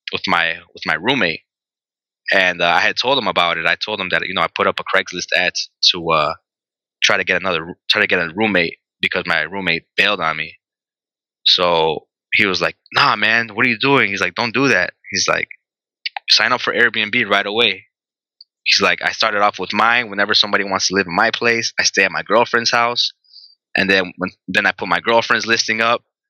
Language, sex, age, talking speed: English, male, 20-39, 220 wpm